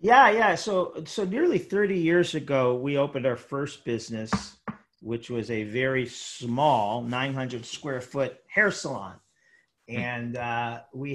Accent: American